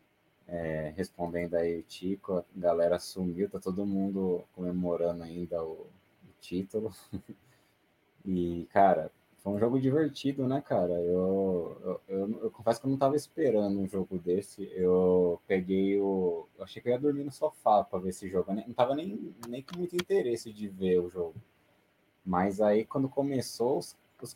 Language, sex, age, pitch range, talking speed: Portuguese, male, 20-39, 90-115 Hz, 170 wpm